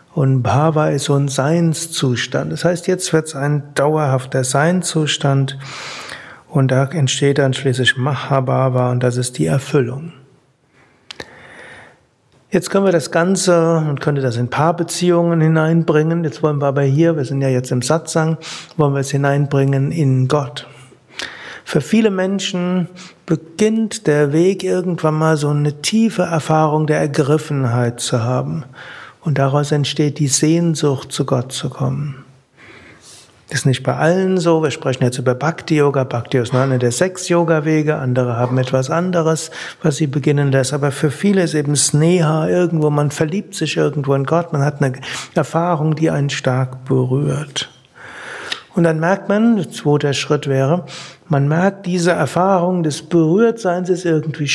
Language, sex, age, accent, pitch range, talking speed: German, male, 60-79, German, 135-170 Hz, 155 wpm